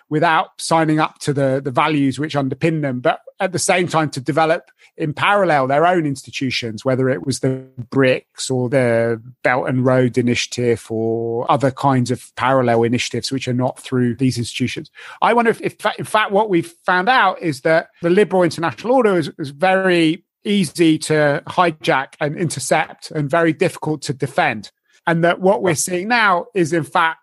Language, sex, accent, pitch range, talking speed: English, male, British, 130-170 Hz, 180 wpm